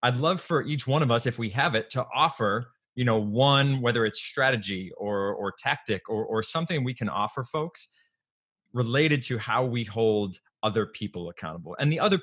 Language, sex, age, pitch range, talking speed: English, male, 30-49, 110-135 Hz, 195 wpm